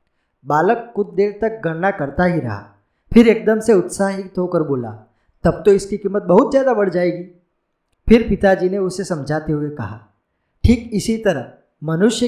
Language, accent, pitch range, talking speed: Gujarati, native, 140-215 Hz, 160 wpm